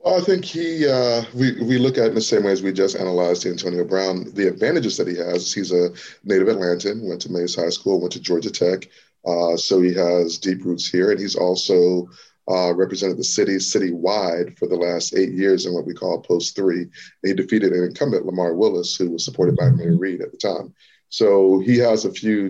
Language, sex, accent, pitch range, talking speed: English, male, American, 90-110 Hz, 225 wpm